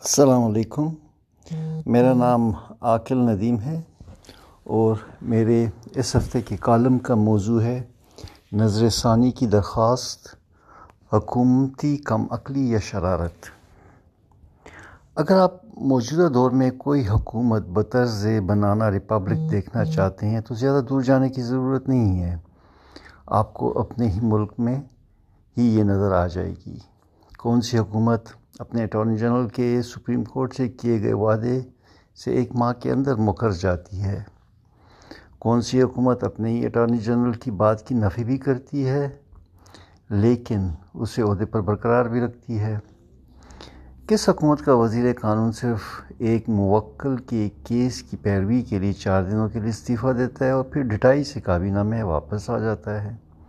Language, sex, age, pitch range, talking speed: Urdu, male, 60-79, 100-125 Hz, 150 wpm